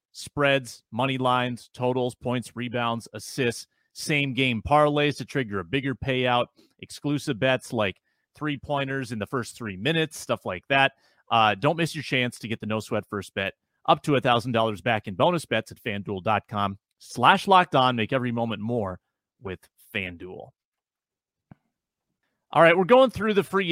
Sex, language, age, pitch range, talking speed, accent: male, English, 30-49, 110-145 Hz, 170 wpm, American